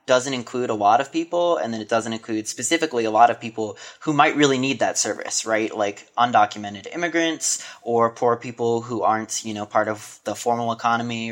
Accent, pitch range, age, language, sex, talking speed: American, 110-135 Hz, 20-39, English, male, 200 wpm